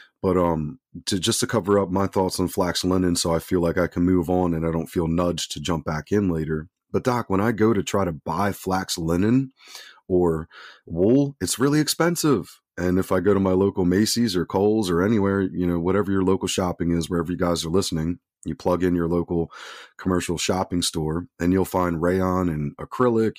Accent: American